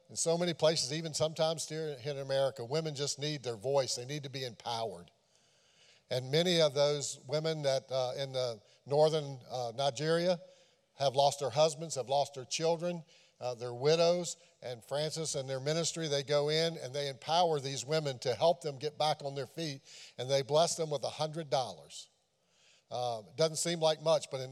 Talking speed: 190 wpm